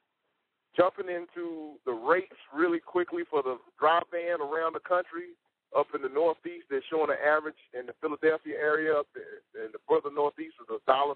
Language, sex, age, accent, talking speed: English, male, 40-59, American, 185 wpm